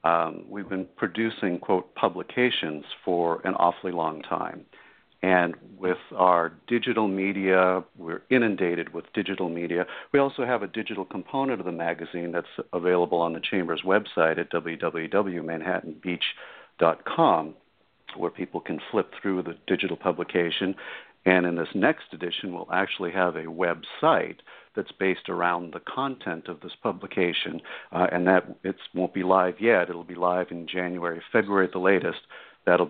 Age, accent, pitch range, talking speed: 50-69, American, 90-105 Hz, 150 wpm